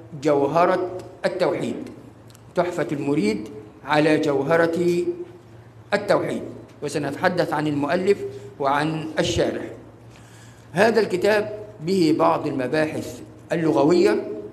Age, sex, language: 50-69, male, Arabic